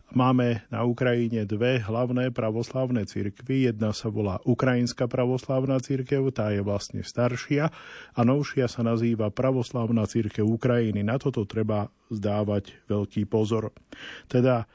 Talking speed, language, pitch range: 125 wpm, Slovak, 110-130 Hz